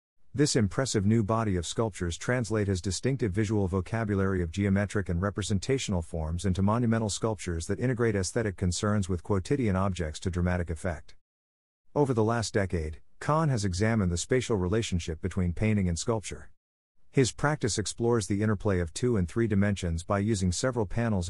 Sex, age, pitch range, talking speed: male, 50-69, 90-115 Hz, 160 wpm